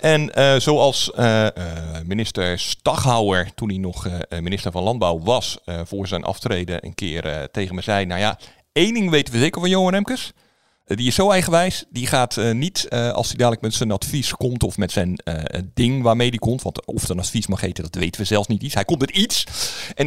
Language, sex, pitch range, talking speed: Dutch, male, 90-125 Hz, 225 wpm